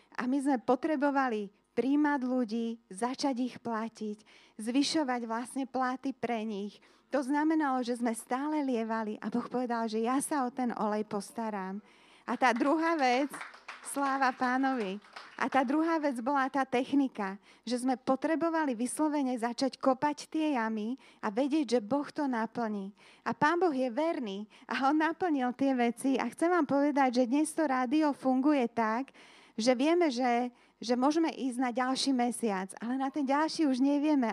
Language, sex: Slovak, female